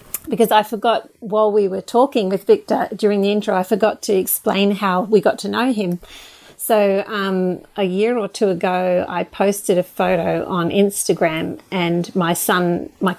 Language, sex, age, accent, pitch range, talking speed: English, female, 30-49, Australian, 180-215 Hz, 180 wpm